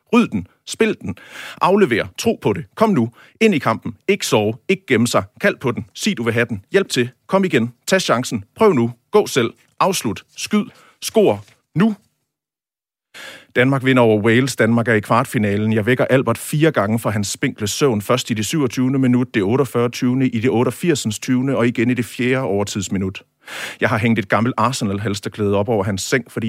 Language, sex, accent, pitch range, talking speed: Danish, male, native, 105-130 Hz, 195 wpm